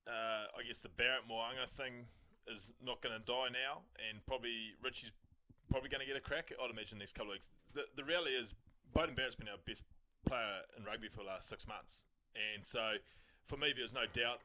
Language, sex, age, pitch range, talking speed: English, male, 20-39, 105-130 Hz, 225 wpm